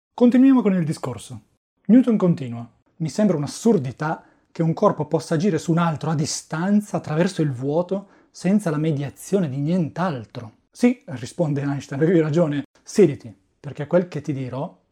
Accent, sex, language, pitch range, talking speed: native, male, Italian, 130-185 Hz, 155 wpm